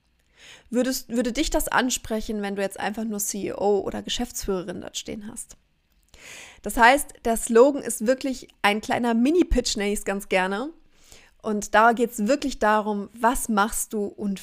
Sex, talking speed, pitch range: female, 160 wpm, 195-245 Hz